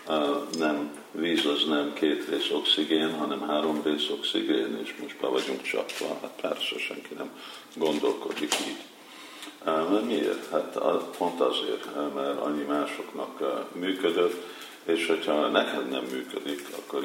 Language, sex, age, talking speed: Hungarian, male, 50-69, 125 wpm